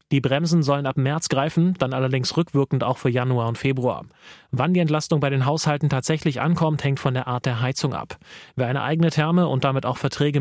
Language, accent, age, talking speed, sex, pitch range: German, German, 30-49, 215 wpm, male, 125-150 Hz